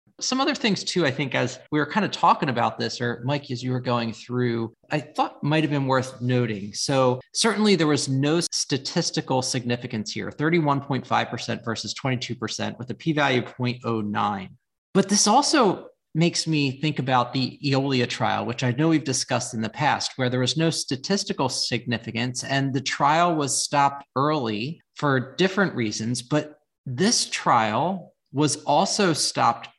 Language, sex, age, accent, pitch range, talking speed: English, male, 40-59, American, 120-155 Hz, 170 wpm